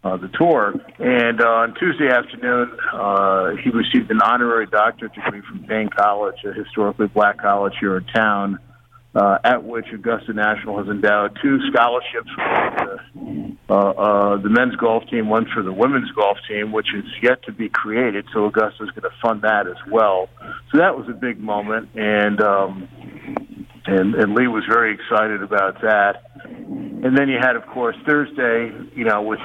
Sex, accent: male, American